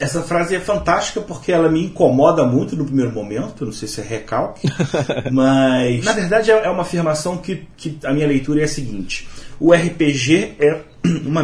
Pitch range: 130-175 Hz